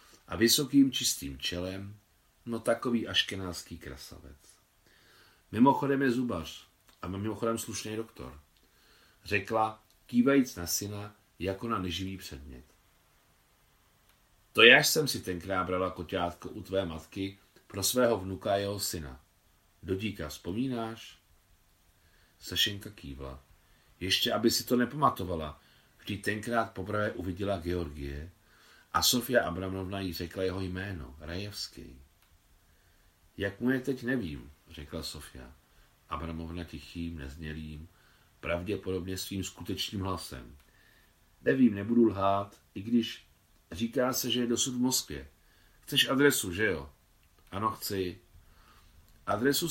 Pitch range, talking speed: 85-115 Hz, 115 wpm